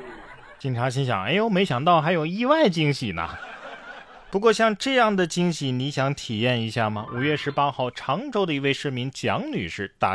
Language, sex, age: Chinese, male, 20-39